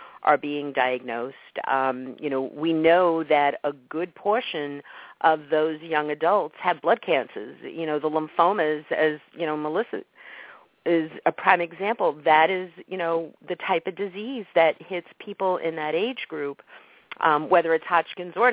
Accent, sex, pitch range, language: American, female, 140-165 Hz, English